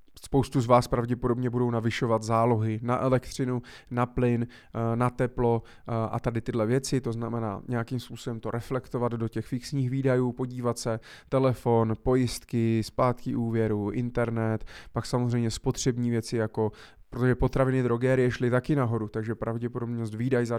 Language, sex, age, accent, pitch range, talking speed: Czech, male, 20-39, native, 115-130 Hz, 145 wpm